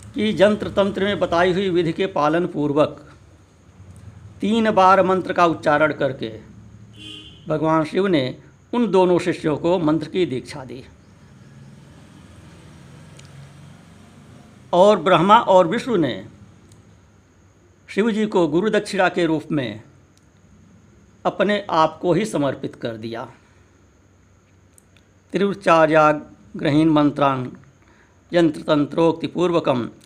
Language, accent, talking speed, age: Hindi, native, 95 wpm, 60-79